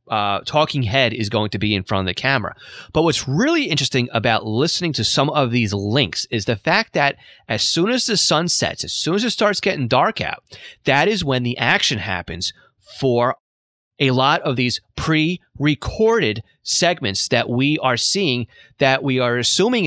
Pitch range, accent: 115-165 Hz, American